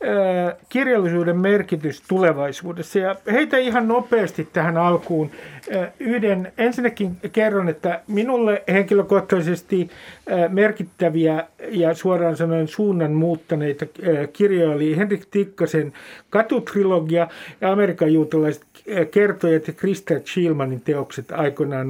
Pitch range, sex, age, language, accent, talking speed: 160-205 Hz, male, 50-69, Finnish, native, 95 wpm